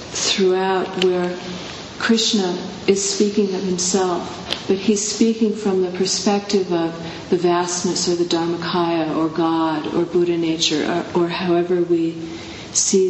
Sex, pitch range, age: female, 165-185 Hz, 40-59